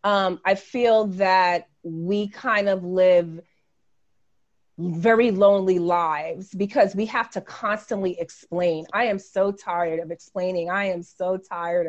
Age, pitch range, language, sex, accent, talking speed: 30-49, 175-205 Hz, English, female, American, 135 wpm